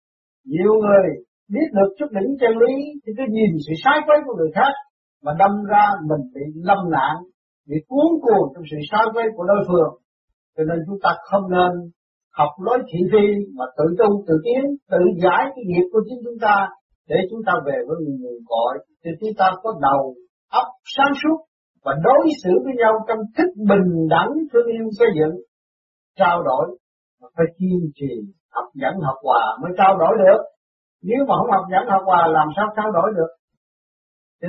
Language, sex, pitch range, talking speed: Vietnamese, male, 160-230 Hz, 195 wpm